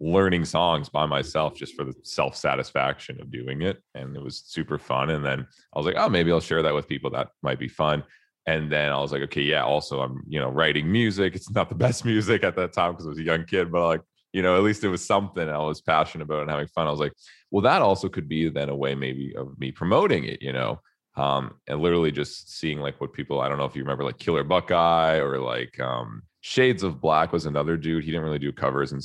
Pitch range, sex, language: 70-85 Hz, male, English